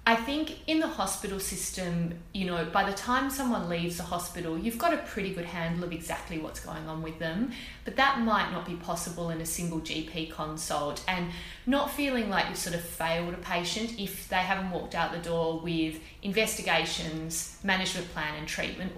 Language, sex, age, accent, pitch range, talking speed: English, female, 30-49, Australian, 170-210 Hz, 195 wpm